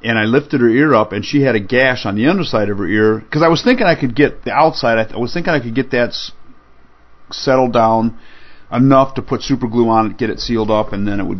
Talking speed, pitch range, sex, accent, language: 280 wpm, 110-135 Hz, male, American, English